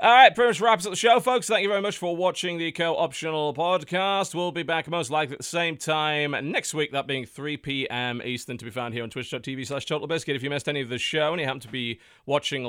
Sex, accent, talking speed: male, British, 260 wpm